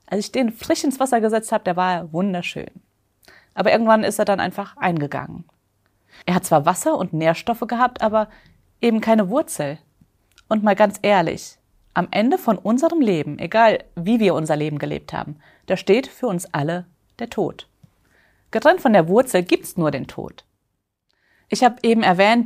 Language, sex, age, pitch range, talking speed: German, female, 30-49, 155-220 Hz, 170 wpm